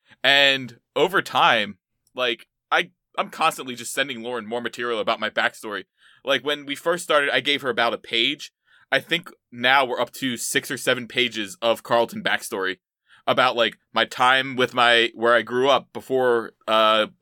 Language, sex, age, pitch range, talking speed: English, male, 20-39, 115-135 Hz, 180 wpm